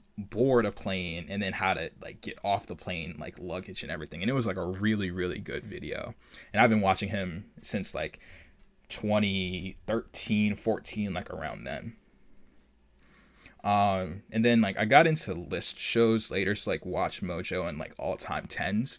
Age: 20-39